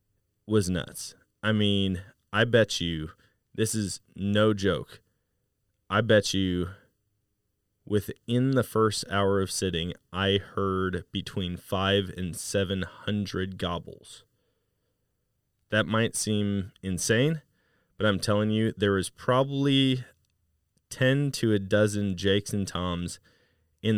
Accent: American